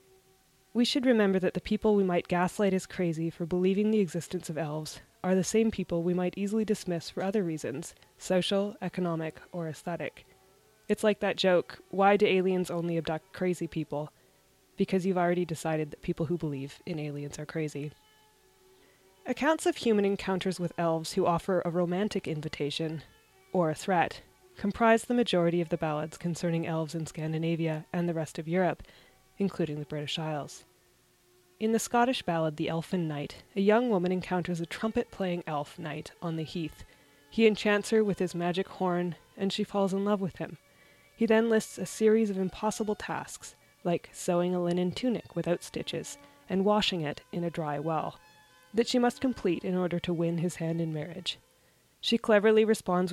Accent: American